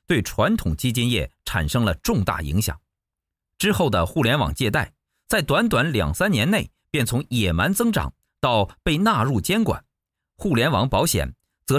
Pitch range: 85-140 Hz